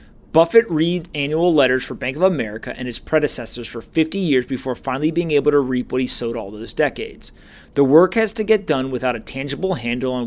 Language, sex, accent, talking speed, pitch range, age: English, male, American, 215 wpm, 125-170 Hz, 30-49